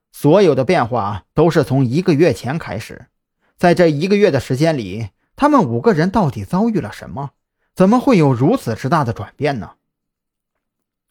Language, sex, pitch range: Chinese, male, 120-170 Hz